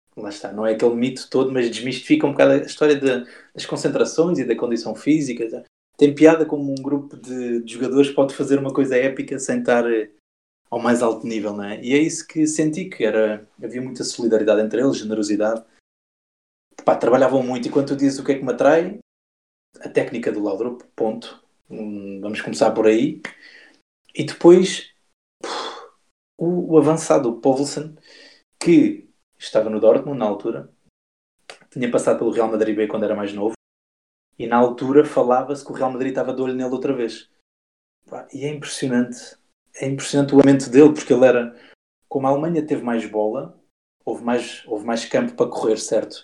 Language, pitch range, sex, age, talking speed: Portuguese, 110-140 Hz, male, 20-39, 180 wpm